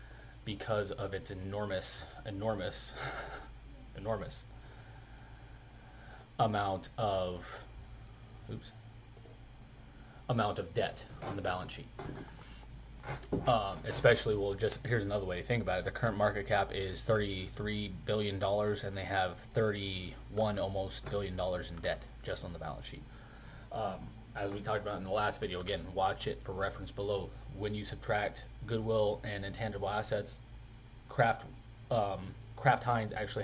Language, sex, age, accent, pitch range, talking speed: English, male, 30-49, American, 100-120 Hz, 135 wpm